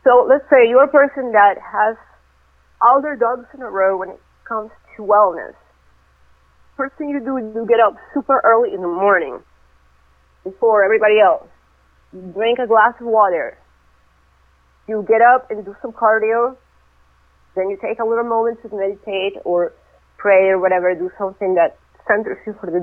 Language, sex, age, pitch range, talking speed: English, female, 30-49, 165-230 Hz, 175 wpm